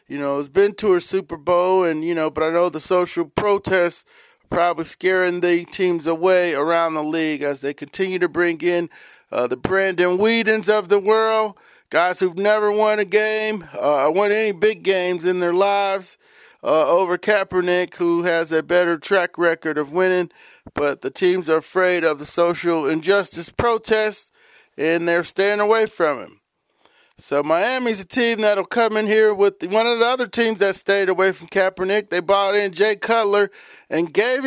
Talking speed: 185 wpm